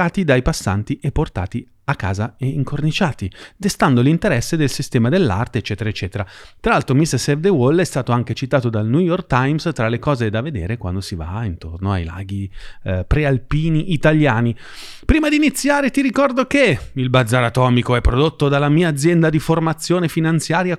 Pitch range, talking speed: 115-165 Hz, 175 wpm